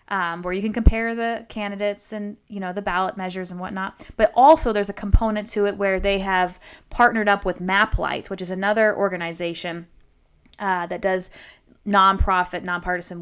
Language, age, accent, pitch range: English, 20-39, American, 180-215 Hz